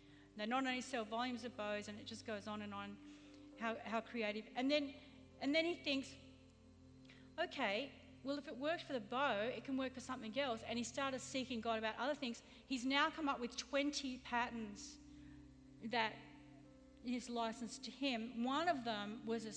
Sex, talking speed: female, 190 wpm